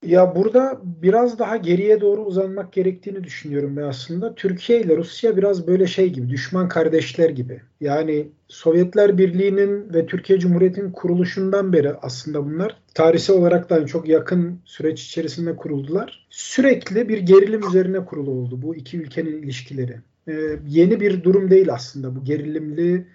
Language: Turkish